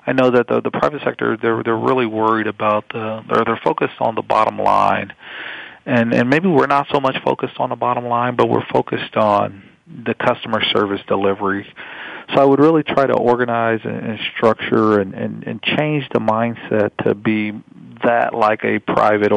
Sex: male